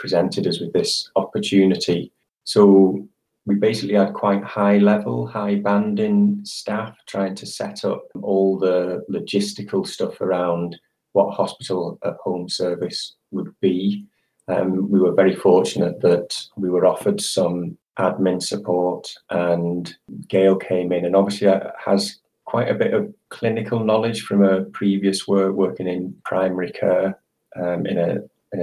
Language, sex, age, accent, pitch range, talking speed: English, male, 30-49, British, 90-105 Hz, 140 wpm